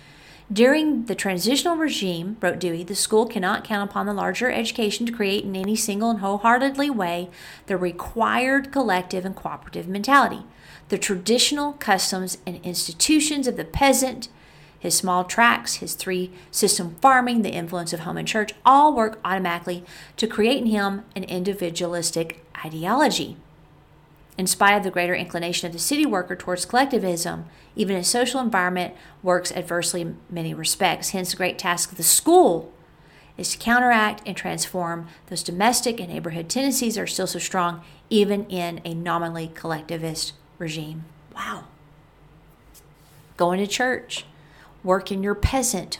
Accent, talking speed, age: American, 150 wpm, 40-59